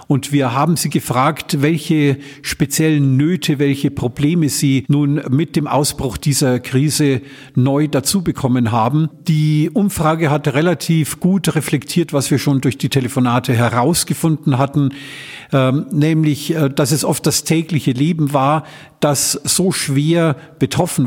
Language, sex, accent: German, male, German